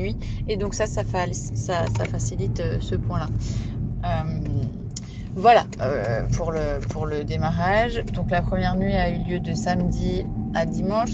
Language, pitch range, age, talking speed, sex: French, 115-190 Hz, 20-39, 145 wpm, female